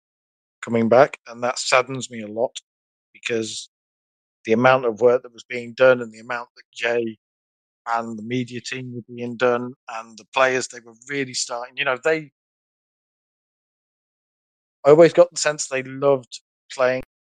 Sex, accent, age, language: male, British, 50-69, English